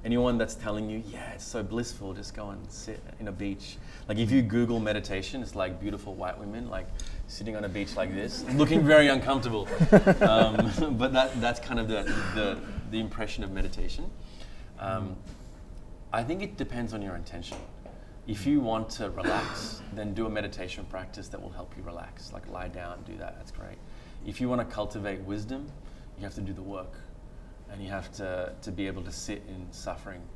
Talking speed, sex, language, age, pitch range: 200 wpm, male, English, 20-39, 90-110 Hz